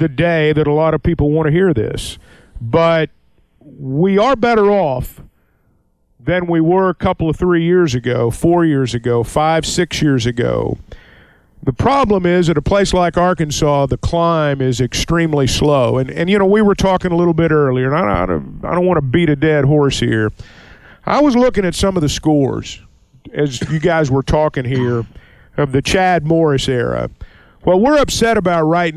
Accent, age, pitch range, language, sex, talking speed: American, 50-69, 135-175 Hz, English, male, 185 wpm